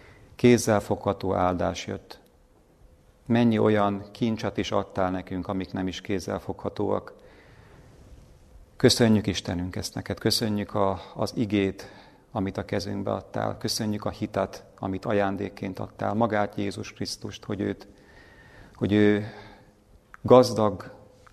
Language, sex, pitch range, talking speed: Hungarian, male, 95-110 Hz, 110 wpm